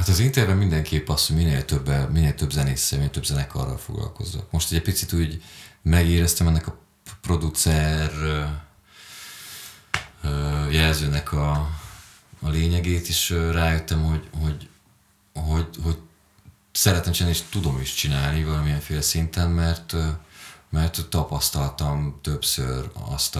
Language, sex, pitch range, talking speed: Hungarian, male, 75-85 Hz, 125 wpm